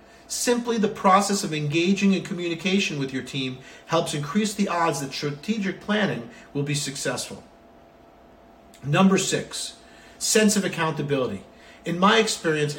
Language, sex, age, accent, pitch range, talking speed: English, male, 50-69, American, 145-190 Hz, 130 wpm